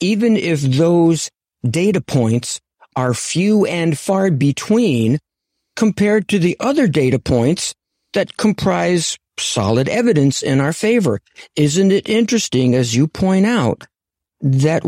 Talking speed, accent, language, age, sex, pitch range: 125 wpm, American, English, 50-69, male, 120-170 Hz